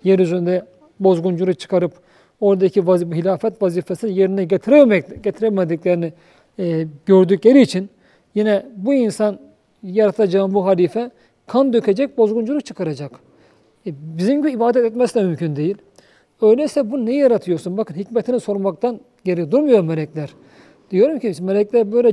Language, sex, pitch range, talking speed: Turkish, male, 180-230 Hz, 120 wpm